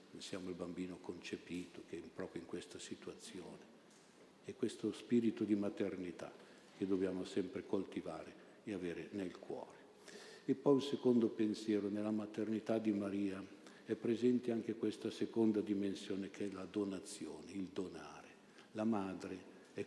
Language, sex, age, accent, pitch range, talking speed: Italian, male, 60-79, native, 95-110 Hz, 140 wpm